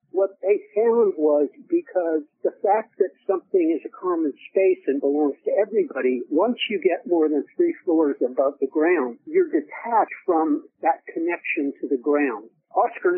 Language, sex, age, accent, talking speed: English, male, 60-79, American, 165 wpm